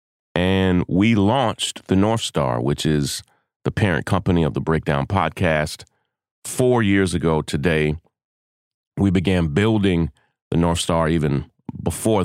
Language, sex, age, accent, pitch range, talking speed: English, male, 30-49, American, 80-95 Hz, 130 wpm